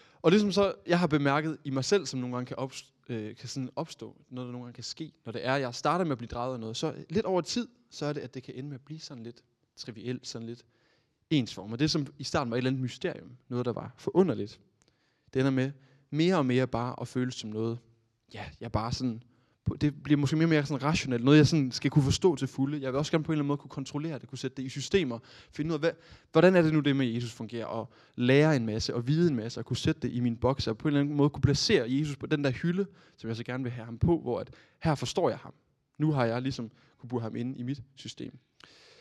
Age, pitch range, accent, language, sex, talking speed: 20-39, 120-150 Hz, native, Danish, male, 280 wpm